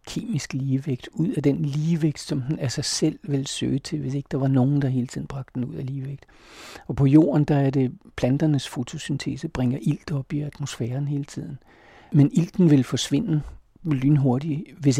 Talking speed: 195 wpm